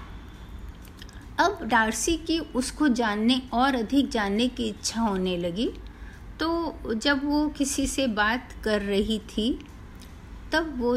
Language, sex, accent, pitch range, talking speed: Hindi, female, native, 200-285 Hz, 125 wpm